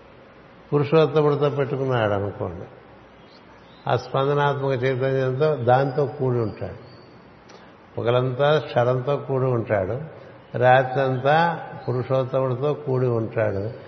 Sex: male